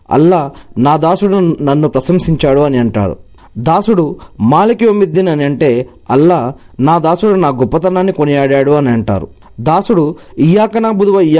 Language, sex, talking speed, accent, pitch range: Telugu, male, 115 wpm, native, 130-185 Hz